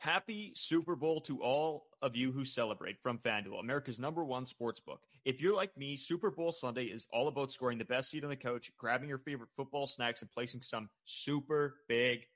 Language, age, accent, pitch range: English, 30-49, American, 120-150 Hz